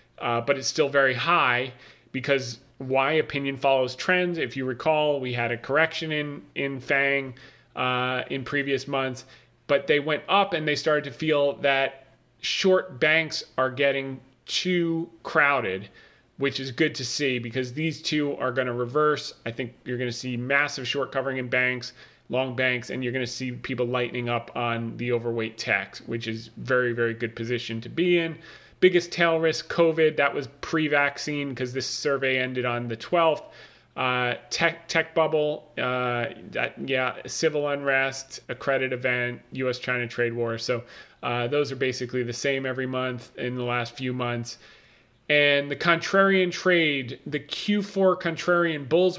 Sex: male